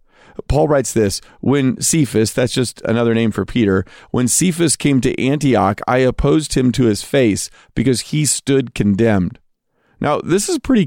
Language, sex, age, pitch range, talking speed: English, male, 40-59, 115-155 Hz, 165 wpm